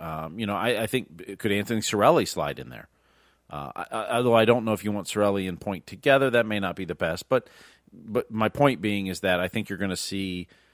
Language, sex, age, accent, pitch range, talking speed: English, male, 40-59, American, 90-115 Hz, 255 wpm